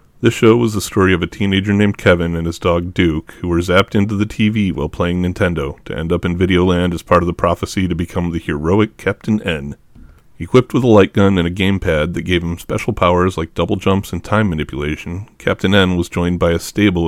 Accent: American